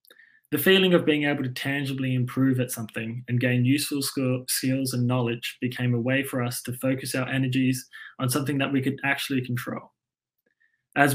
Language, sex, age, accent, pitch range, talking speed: English, male, 20-39, Australian, 125-145 Hz, 180 wpm